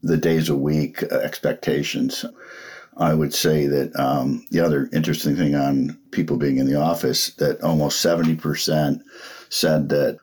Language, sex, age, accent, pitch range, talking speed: English, male, 50-69, American, 75-90 Hz, 145 wpm